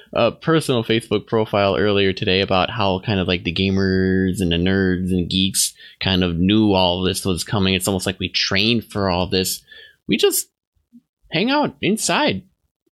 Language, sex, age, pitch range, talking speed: English, male, 20-39, 100-165 Hz, 175 wpm